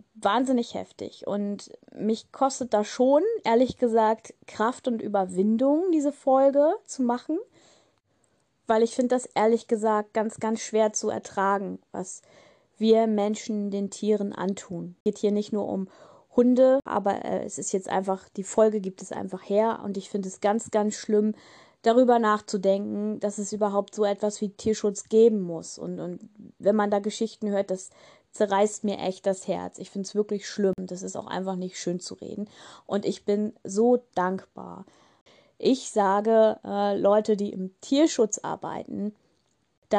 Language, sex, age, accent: German, female, 20-39, German